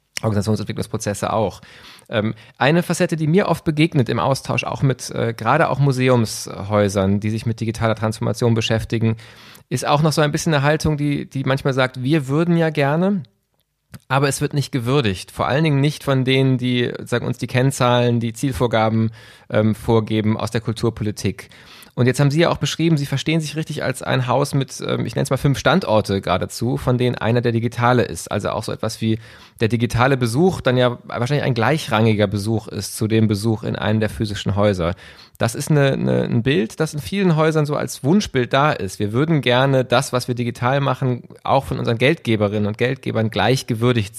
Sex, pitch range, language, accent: male, 110-140 Hz, German, German